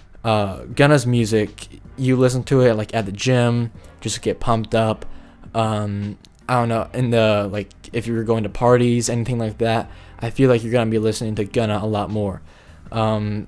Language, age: English, 10-29